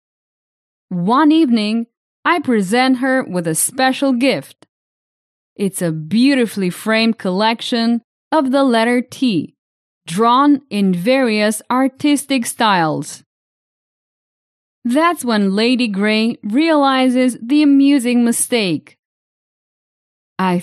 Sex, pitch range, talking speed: female, 215-280 Hz, 95 wpm